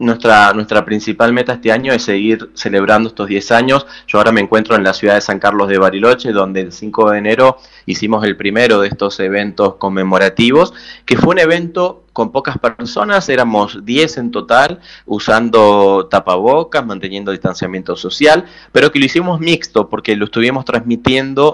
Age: 20-39